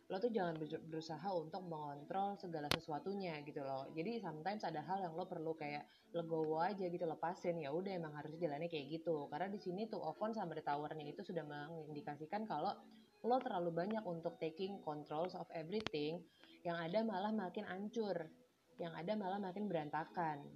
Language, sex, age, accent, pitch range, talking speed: Indonesian, female, 20-39, native, 160-205 Hz, 170 wpm